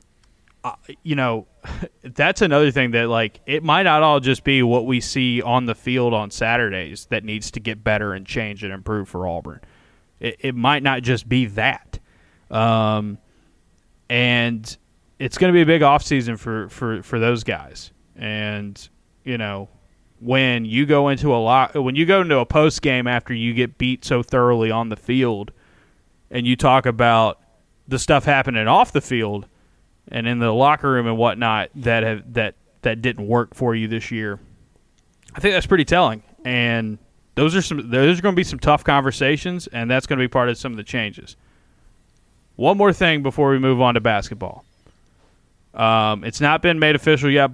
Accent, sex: American, male